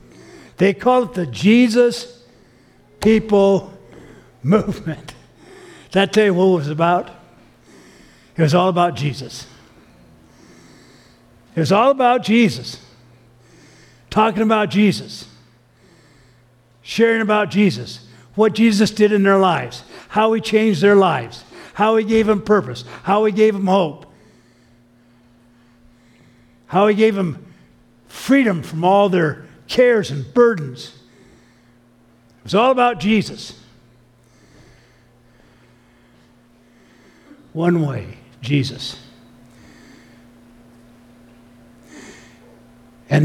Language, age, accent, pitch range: English, 60-79, American, 120-195 Hz